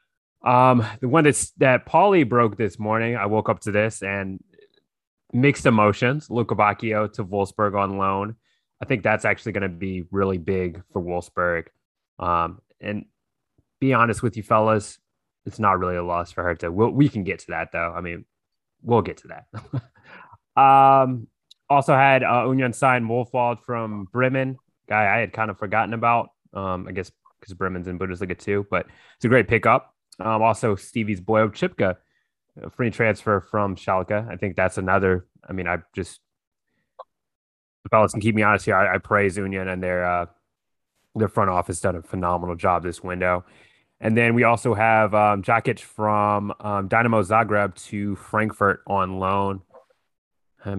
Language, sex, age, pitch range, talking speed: English, male, 20-39, 95-115 Hz, 175 wpm